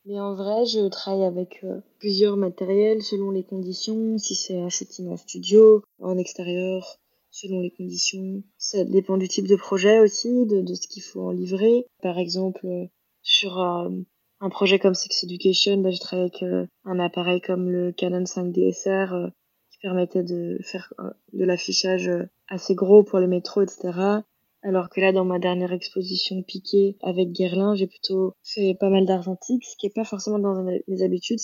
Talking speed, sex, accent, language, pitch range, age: 170 wpm, female, French, French, 185-195 Hz, 20-39